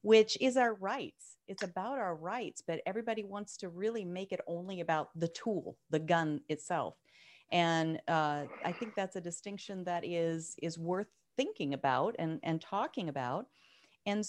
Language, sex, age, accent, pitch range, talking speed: English, female, 40-59, American, 160-210 Hz, 170 wpm